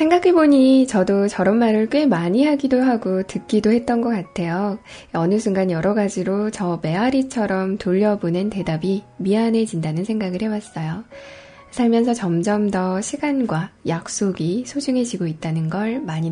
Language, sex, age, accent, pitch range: Korean, female, 10-29, native, 185-250 Hz